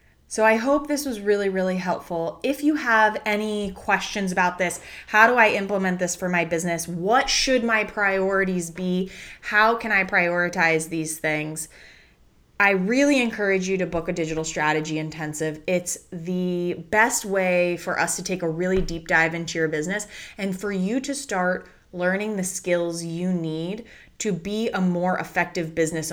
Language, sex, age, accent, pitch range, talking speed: English, female, 20-39, American, 165-195 Hz, 170 wpm